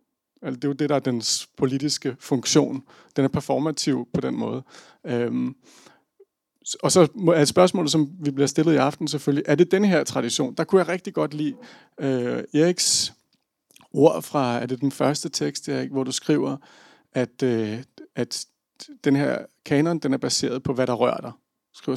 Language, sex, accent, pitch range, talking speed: Danish, male, native, 135-170 Hz, 170 wpm